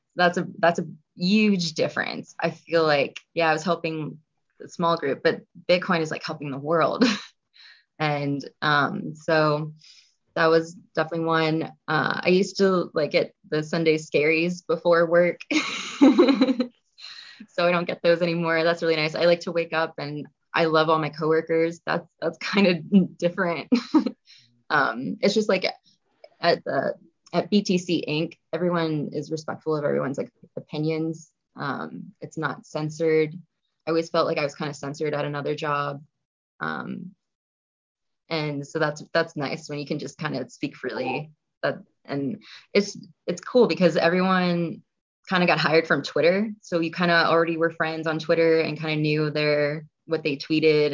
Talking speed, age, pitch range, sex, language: 170 wpm, 20-39, 155-175 Hz, female, English